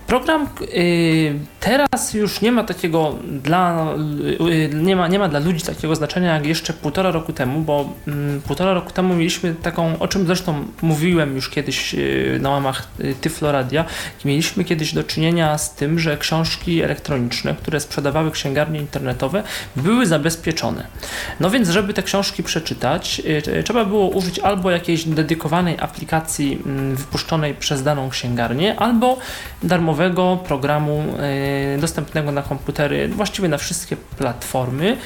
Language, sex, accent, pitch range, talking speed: Polish, male, native, 145-180 Hz, 130 wpm